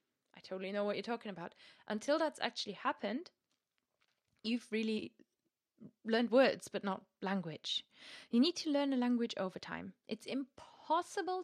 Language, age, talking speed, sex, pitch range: English, 20-39, 145 wpm, female, 195-250 Hz